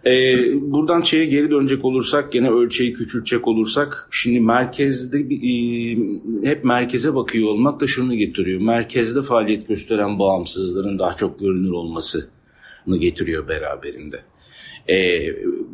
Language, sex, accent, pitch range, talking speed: Turkish, male, native, 95-130 Hz, 120 wpm